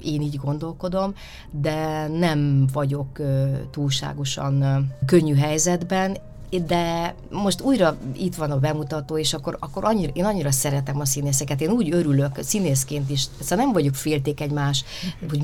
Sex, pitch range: female, 140-165 Hz